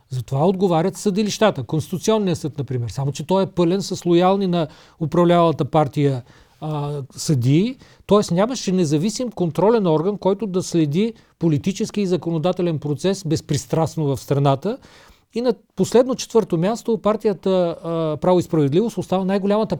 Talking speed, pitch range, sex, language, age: 135 wpm, 150-195 Hz, male, Bulgarian, 40-59